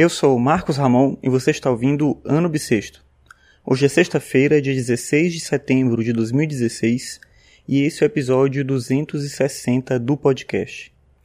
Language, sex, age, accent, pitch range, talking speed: Portuguese, male, 20-39, Brazilian, 120-150 Hz, 150 wpm